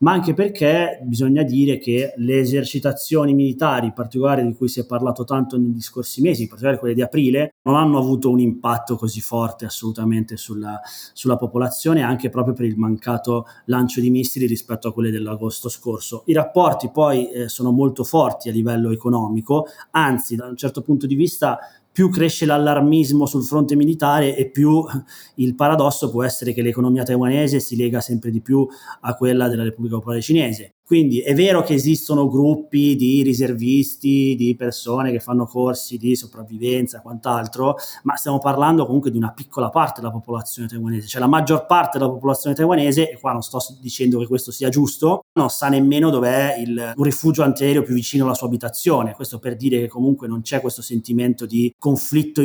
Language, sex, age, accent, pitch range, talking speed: Italian, male, 20-39, native, 120-140 Hz, 185 wpm